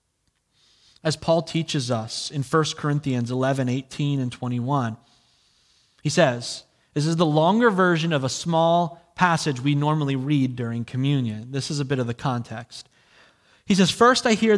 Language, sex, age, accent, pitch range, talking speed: English, male, 30-49, American, 125-155 Hz, 160 wpm